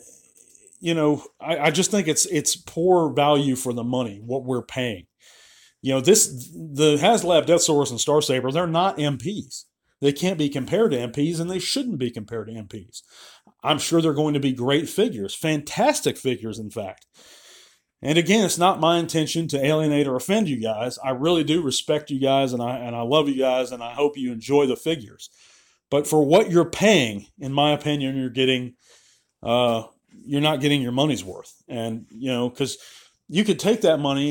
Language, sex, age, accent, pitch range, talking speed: English, male, 40-59, American, 130-165 Hz, 195 wpm